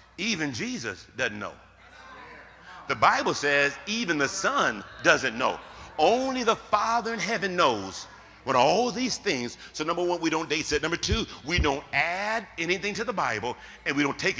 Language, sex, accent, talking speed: English, male, American, 175 wpm